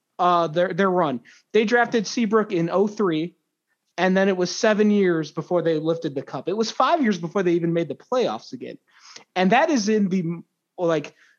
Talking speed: 200 wpm